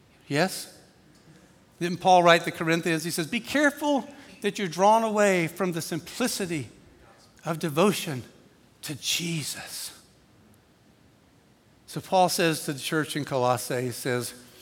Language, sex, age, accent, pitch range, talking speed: English, male, 60-79, American, 125-185 Hz, 125 wpm